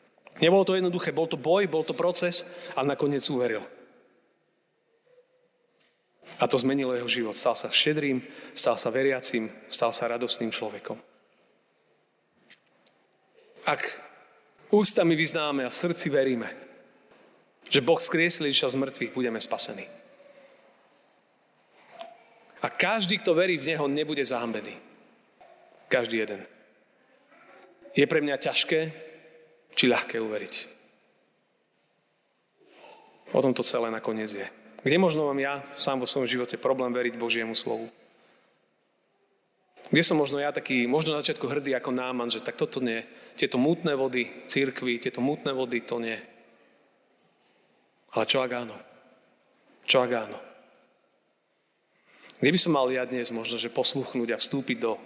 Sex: male